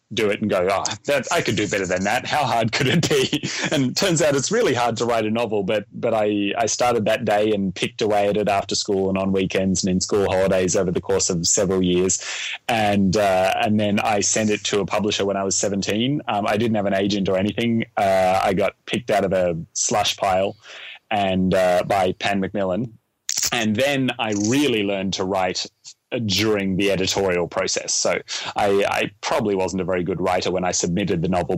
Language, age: English, 20-39